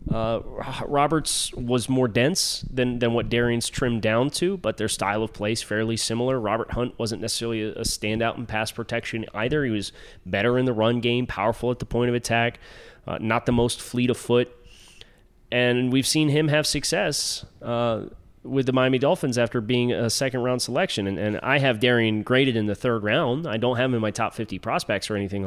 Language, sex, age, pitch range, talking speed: English, male, 30-49, 110-130 Hz, 205 wpm